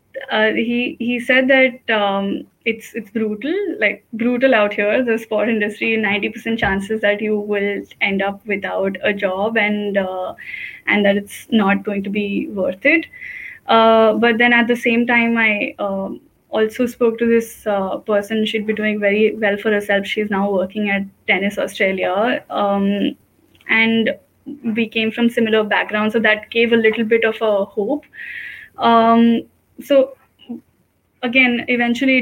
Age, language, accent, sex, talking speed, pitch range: 10-29, English, Indian, female, 160 wpm, 205-235 Hz